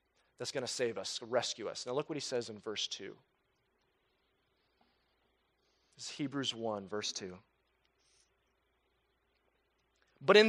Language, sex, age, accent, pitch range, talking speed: English, male, 30-49, American, 140-200 Hz, 125 wpm